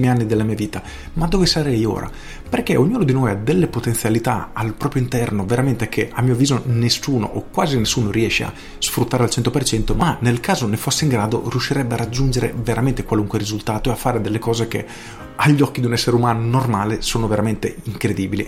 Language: Italian